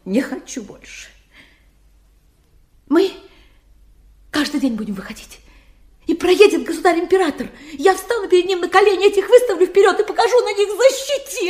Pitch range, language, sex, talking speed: 285-405 Hz, Russian, female, 130 wpm